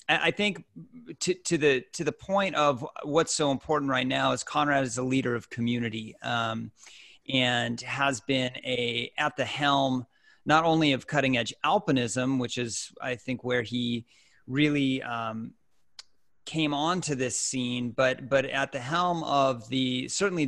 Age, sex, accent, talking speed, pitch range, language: 30-49, male, American, 160 wpm, 120-140 Hz, English